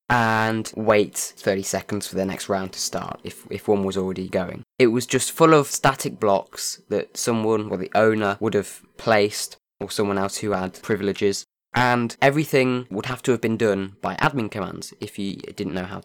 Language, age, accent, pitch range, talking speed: English, 20-39, British, 100-125 Hz, 200 wpm